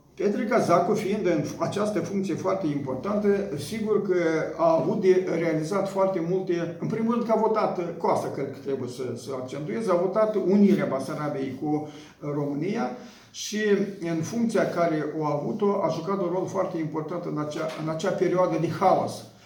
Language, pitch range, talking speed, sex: Romanian, 155-195 Hz, 170 wpm, male